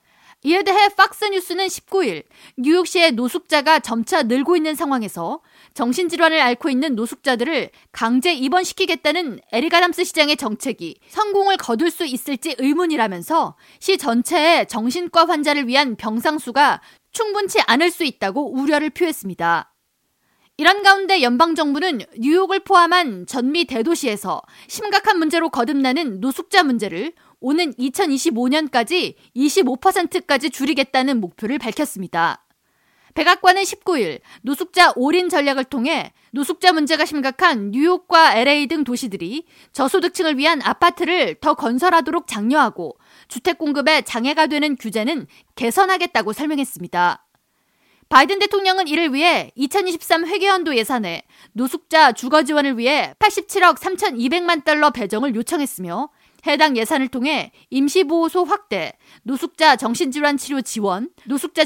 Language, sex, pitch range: Korean, female, 255-350 Hz